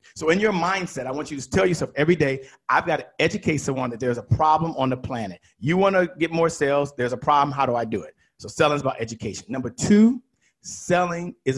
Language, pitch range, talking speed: English, 130-205 Hz, 245 wpm